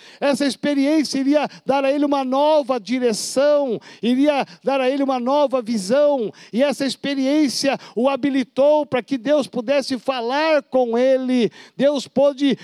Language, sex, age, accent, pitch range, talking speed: Portuguese, male, 60-79, Brazilian, 205-275 Hz, 145 wpm